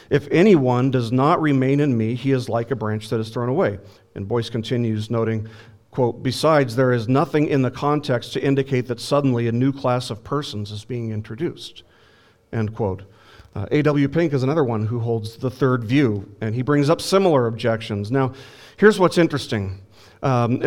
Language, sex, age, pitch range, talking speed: English, male, 40-59, 115-150 Hz, 185 wpm